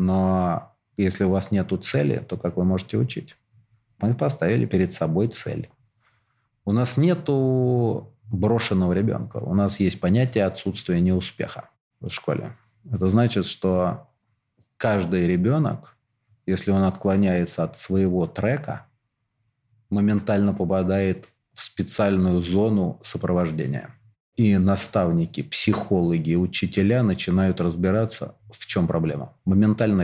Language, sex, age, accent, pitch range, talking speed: Russian, male, 30-49, native, 90-115 Hz, 110 wpm